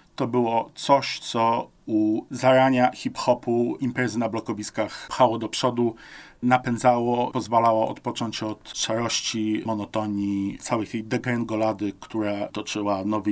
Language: Polish